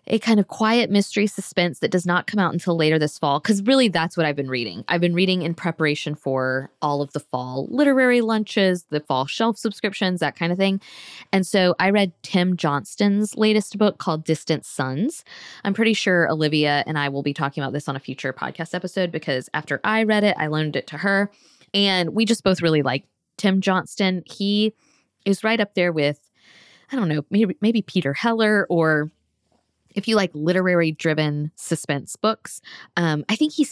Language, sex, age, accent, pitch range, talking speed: English, female, 20-39, American, 150-205 Hz, 195 wpm